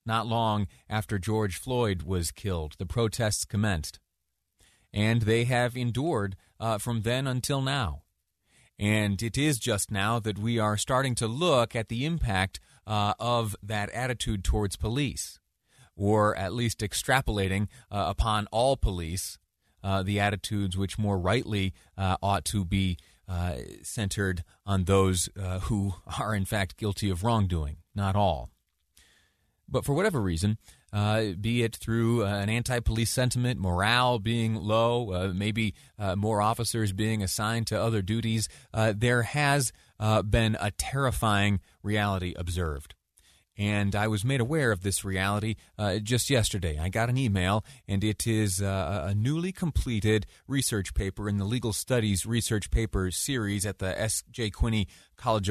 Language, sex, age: English, male, 30-49